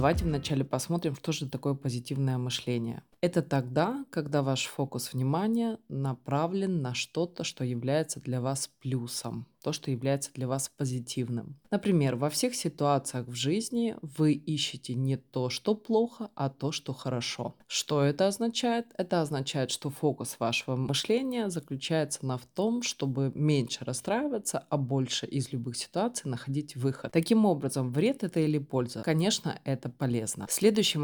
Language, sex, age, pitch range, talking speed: Russian, female, 20-39, 130-160 Hz, 145 wpm